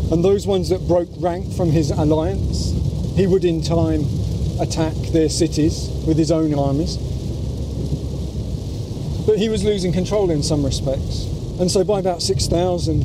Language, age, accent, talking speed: English, 40-59, British, 150 wpm